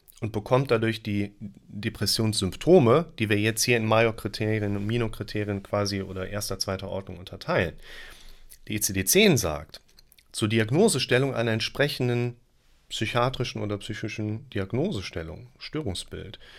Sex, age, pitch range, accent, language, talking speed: male, 40-59, 105-135 Hz, German, German, 110 wpm